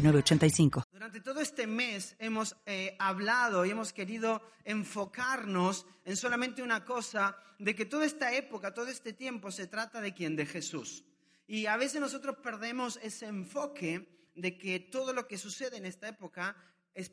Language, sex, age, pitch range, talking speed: Spanish, male, 30-49, 195-250 Hz, 160 wpm